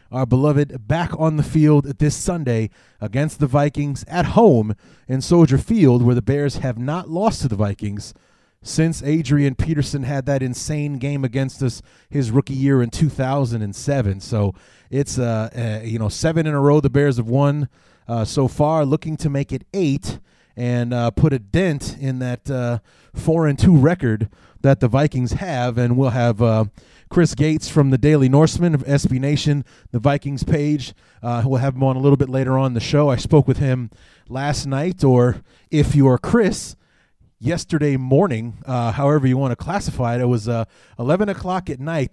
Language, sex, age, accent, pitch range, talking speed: English, male, 30-49, American, 120-145 Hz, 190 wpm